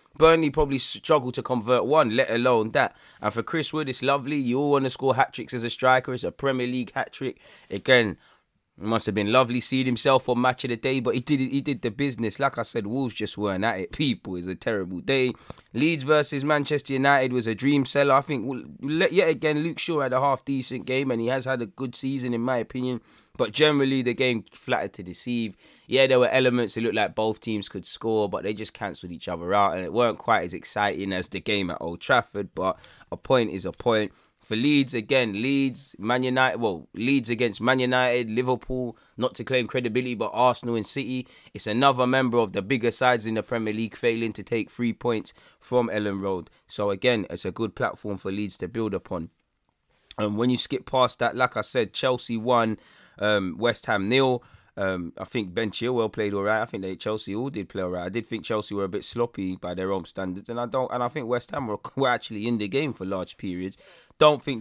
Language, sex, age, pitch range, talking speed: English, male, 20-39, 105-130 Hz, 230 wpm